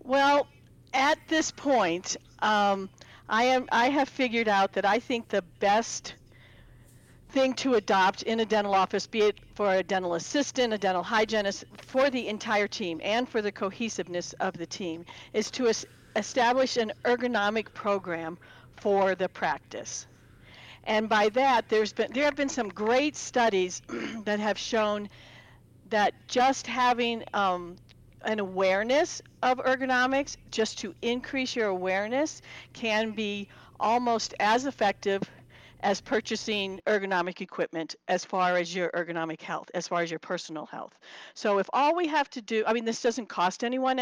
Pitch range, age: 185-240 Hz, 50-69